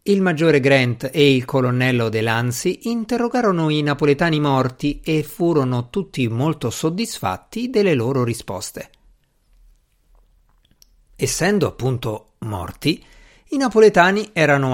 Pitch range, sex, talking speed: 125-170 Hz, male, 105 wpm